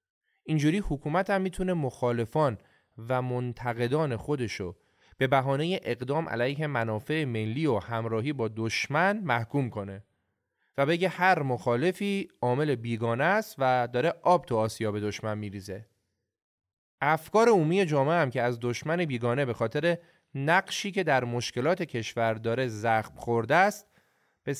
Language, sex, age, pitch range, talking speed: Persian, male, 30-49, 115-170 Hz, 135 wpm